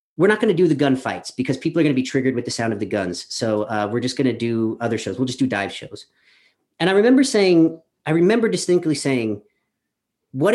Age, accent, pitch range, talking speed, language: 40-59, American, 135-190 Hz, 245 wpm, English